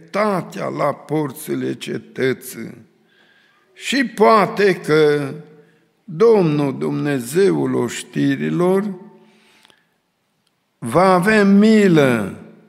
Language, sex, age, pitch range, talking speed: Romanian, male, 60-79, 140-195 Hz, 55 wpm